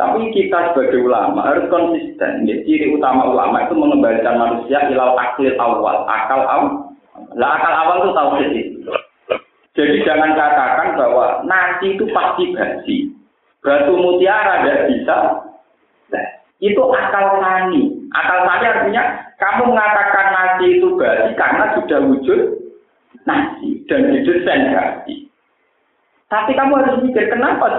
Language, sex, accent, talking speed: Indonesian, male, native, 130 wpm